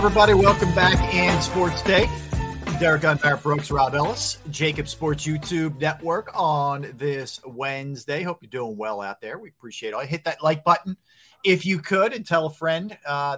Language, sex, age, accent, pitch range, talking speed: English, male, 40-59, American, 120-155 Hz, 175 wpm